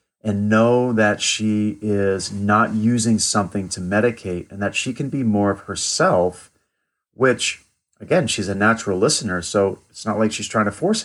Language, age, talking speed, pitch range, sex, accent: English, 40-59, 175 wpm, 100-120 Hz, male, American